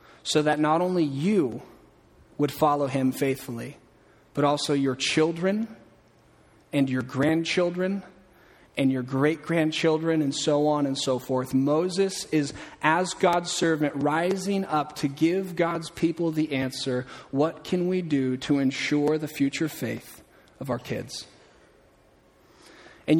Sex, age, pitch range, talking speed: male, 30-49, 145-175 Hz, 130 wpm